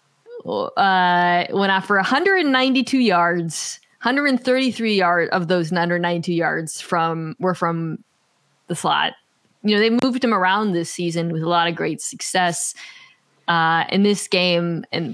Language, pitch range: English, 170-195 Hz